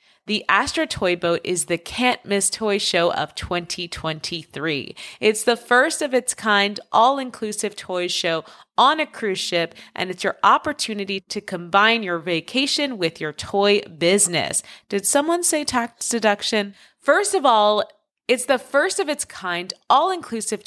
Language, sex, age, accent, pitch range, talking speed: English, female, 30-49, American, 185-235 Hz, 150 wpm